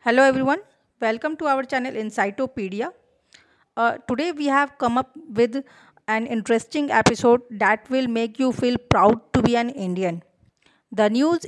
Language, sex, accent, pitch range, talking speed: English, female, Indian, 205-255 Hz, 150 wpm